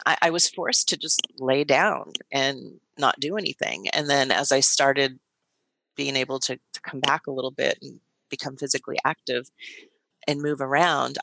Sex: female